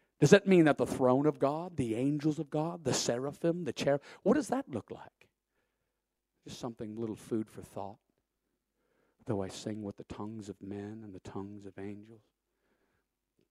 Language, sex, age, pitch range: English, male, 50-69, 115-140 Hz